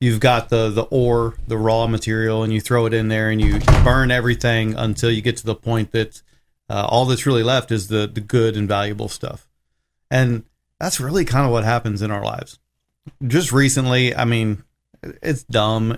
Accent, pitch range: American, 110-125 Hz